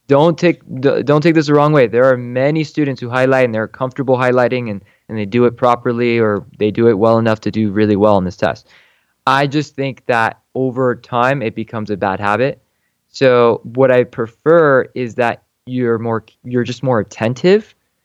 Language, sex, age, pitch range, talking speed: English, male, 20-39, 115-140 Hz, 200 wpm